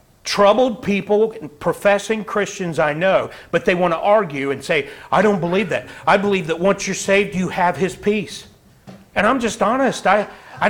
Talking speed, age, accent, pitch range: 190 wpm, 40-59, American, 170-220 Hz